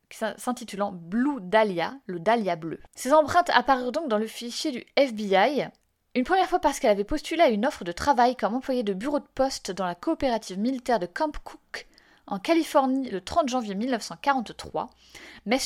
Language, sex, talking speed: French, female, 180 wpm